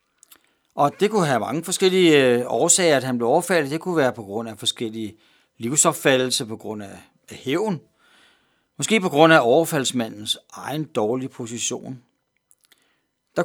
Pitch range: 120-175 Hz